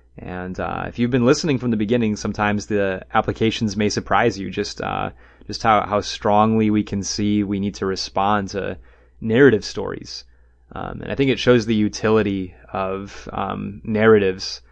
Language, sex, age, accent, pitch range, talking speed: English, male, 30-49, American, 95-115 Hz, 170 wpm